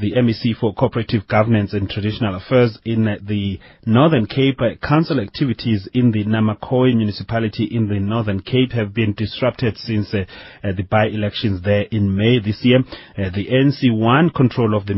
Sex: male